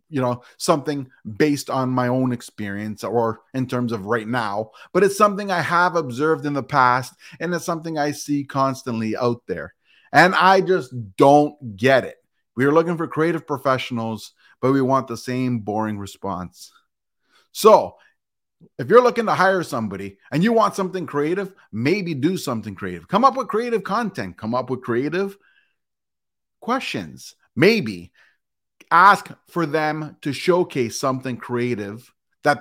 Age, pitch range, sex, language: 30-49, 125-190 Hz, male, English